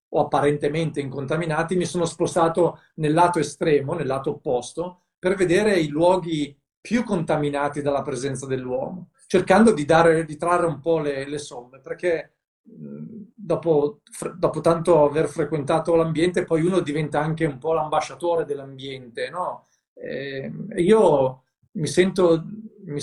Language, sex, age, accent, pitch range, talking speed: Italian, male, 40-59, native, 150-180 Hz, 135 wpm